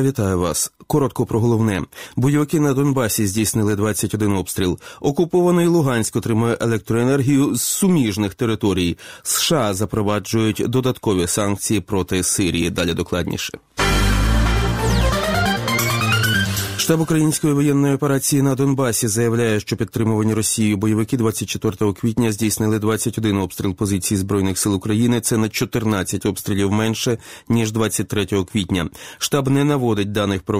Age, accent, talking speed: 30-49, native, 115 wpm